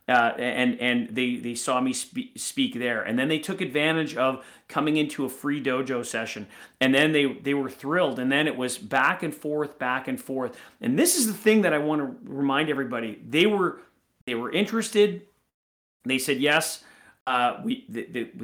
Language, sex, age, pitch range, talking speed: English, male, 40-59, 130-170 Hz, 190 wpm